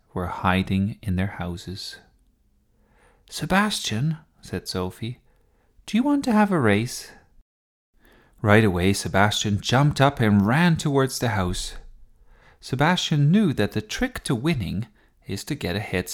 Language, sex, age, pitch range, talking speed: English, male, 30-49, 90-135 Hz, 140 wpm